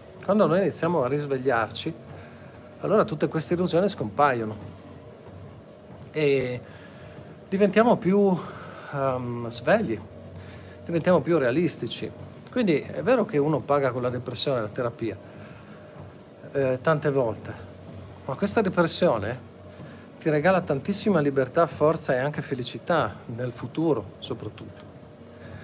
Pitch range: 120-155 Hz